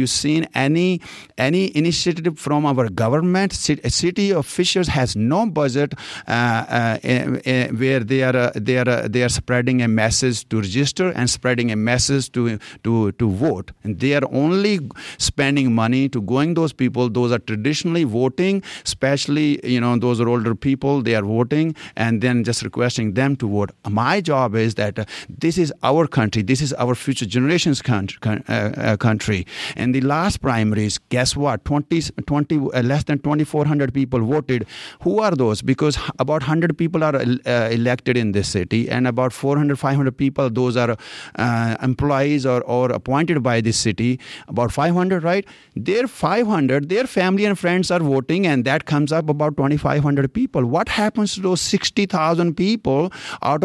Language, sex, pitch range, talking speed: English, male, 120-155 Hz, 170 wpm